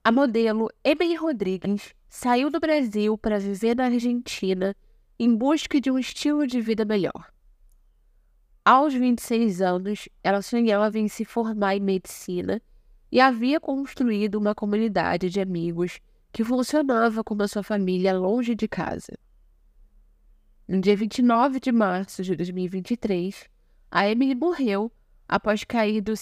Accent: Brazilian